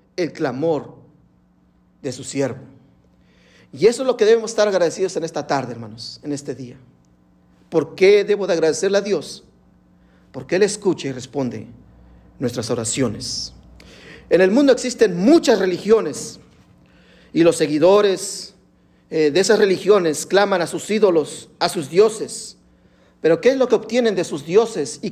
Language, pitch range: Spanish, 130-210 Hz